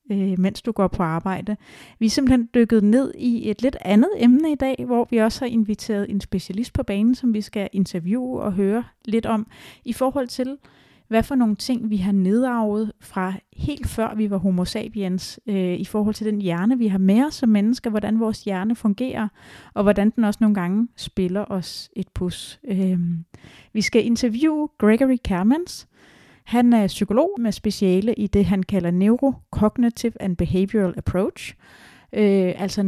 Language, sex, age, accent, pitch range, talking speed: Danish, female, 30-49, native, 190-225 Hz, 175 wpm